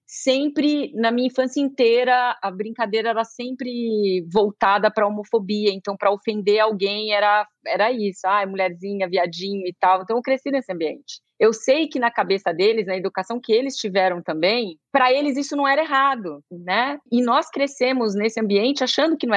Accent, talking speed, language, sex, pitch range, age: Brazilian, 180 wpm, Portuguese, female, 190-245 Hz, 30-49